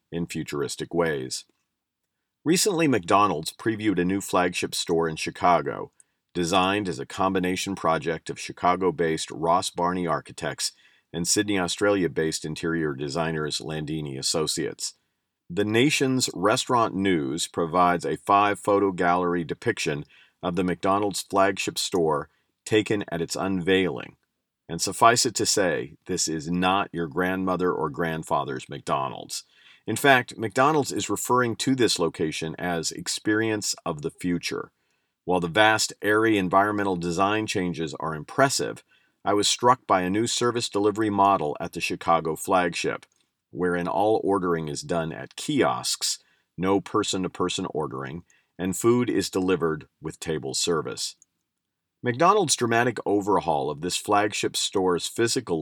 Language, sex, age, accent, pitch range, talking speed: English, male, 40-59, American, 85-105 Hz, 130 wpm